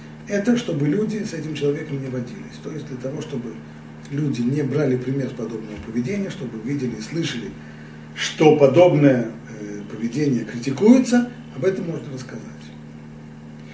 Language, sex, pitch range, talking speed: Russian, male, 105-160 Hz, 140 wpm